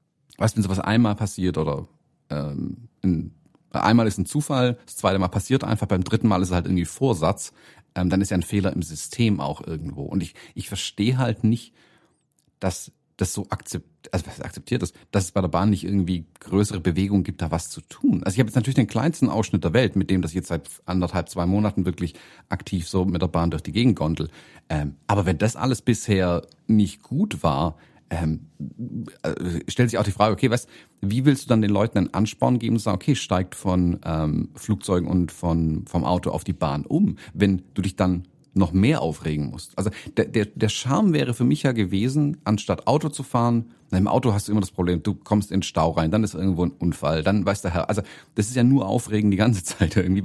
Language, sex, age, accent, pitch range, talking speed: German, male, 40-59, German, 90-115 Hz, 225 wpm